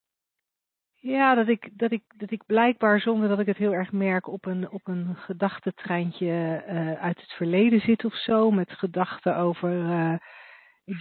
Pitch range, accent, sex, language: 175-230 Hz, Dutch, female, Dutch